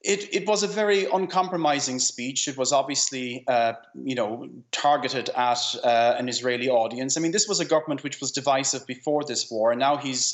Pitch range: 125-150 Hz